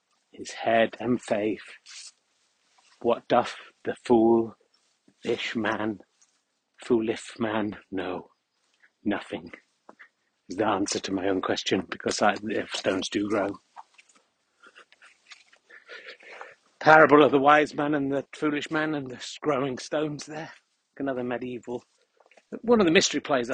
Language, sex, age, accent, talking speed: English, male, 60-79, British, 120 wpm